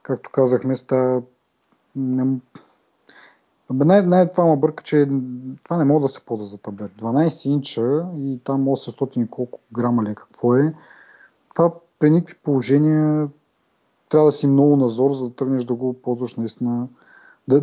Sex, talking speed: male, 155 wpm